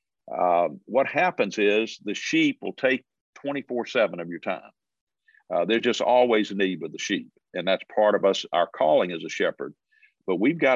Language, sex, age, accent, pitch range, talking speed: English, male, 50-69, American, 95-140 Hz, 190 wpm